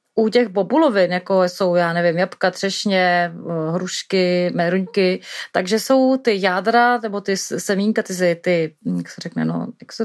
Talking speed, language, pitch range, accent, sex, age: 155 wpm, Czech, 195-235 Hz, native, female, 30-49